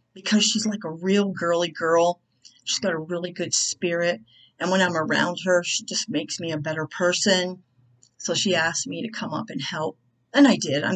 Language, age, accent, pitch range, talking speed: English, 40-59, American, 160-200 Hz, 210 wpm